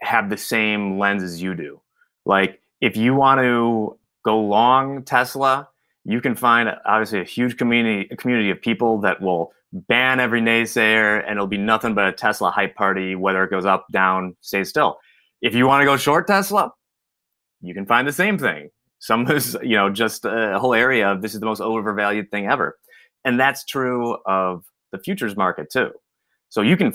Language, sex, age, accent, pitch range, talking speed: English, male, 30-49, American, 95-125 Hz, 195 wpm